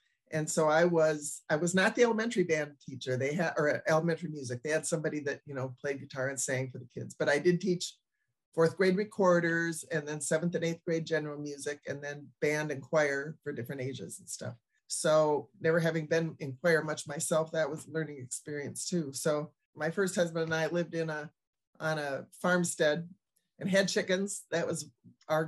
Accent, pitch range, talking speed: American, 150-180 Hz, 200 wpm